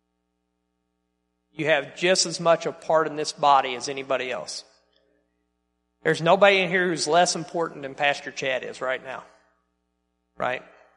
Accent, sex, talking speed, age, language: American, male, 150 wpm, 40-59, English